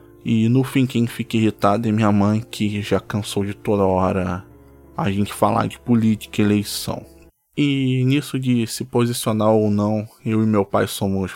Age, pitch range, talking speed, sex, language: 20-39, 100-120 Hz, 180 wpm, male, Portuguese